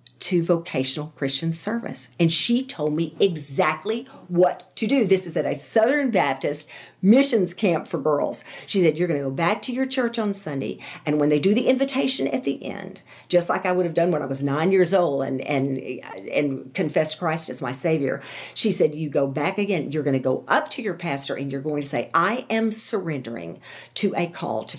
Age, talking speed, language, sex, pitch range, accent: 50-69, 215 wpm, English, female, 140-190 Hz, American